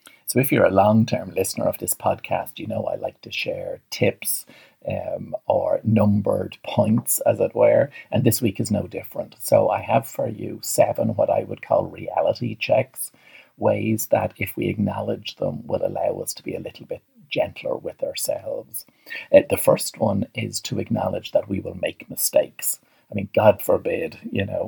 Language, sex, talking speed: English, male, 185 wpm